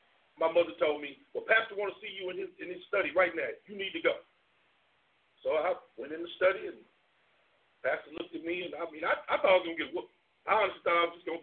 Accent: American